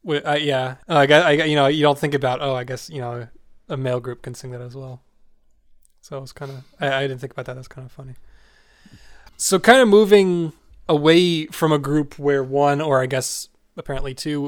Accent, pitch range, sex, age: American, 130-150 Hz, male, 20-39